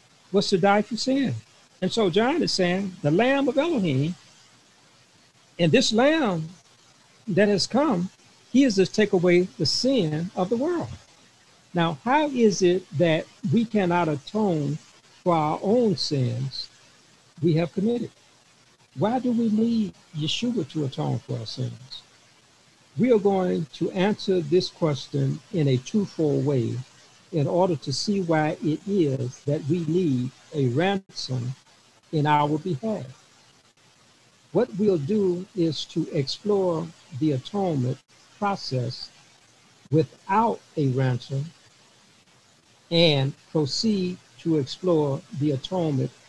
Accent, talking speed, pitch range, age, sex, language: American, 130 wpm, 140-195 Hz, 60-79, male, English